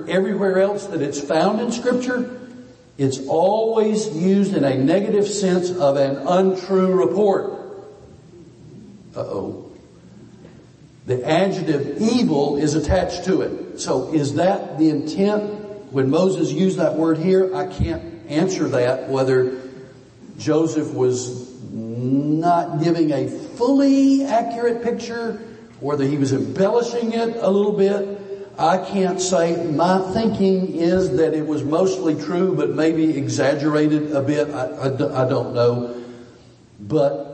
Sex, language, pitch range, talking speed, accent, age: male, English, 130-190 Hz, 130 wpm, American, 60-79